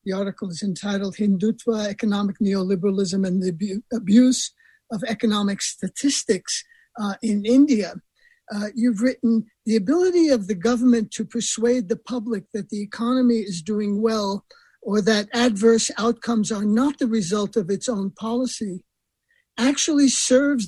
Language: English